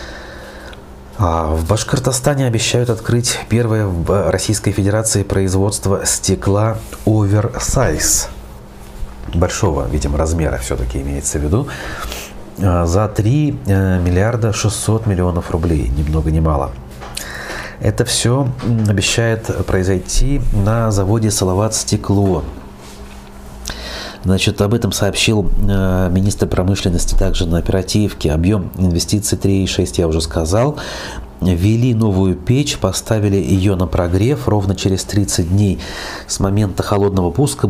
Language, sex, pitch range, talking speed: Russian, male, 85-105 Hz, 105 wpm